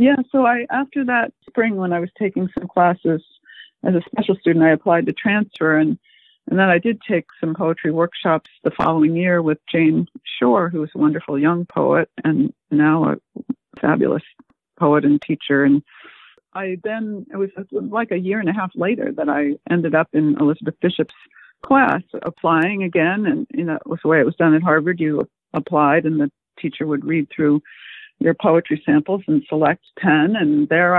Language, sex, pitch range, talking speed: English, female, 155-200 Hz, 190 wpm